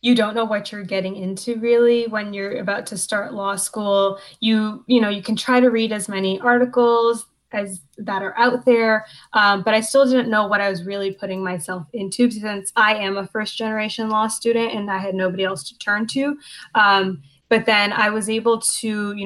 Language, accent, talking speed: English, American, 210 wpm